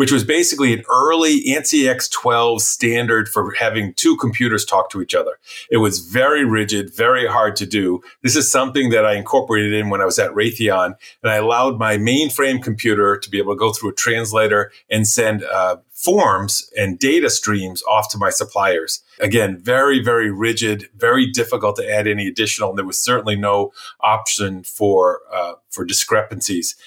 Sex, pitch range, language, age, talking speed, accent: male, 105-130 Hz, English, 40-59, 180 wpm, American